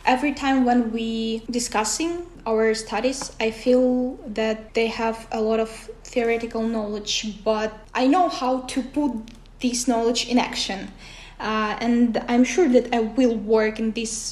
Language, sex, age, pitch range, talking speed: Finnish, female, 10-29, 215-245 Hz, 155 wpm